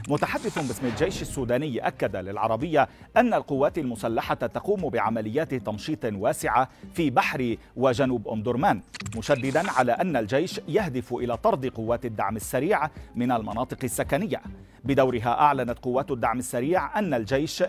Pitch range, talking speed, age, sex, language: 115-145 Hz, 125 wpm, 40-59, male, Arabic